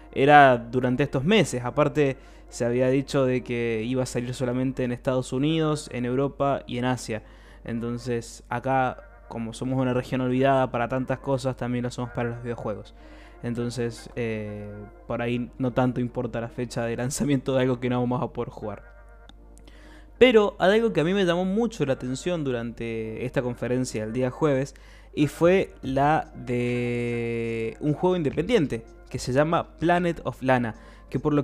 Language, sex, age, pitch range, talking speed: Spanish, male, 20-39, 120-140 Hz, 170 wpm